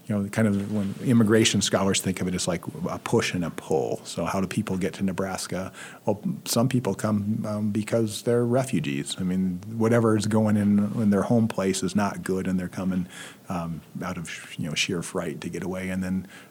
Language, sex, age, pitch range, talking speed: English, male, 40-59, 95-110 Hz, 220 wpm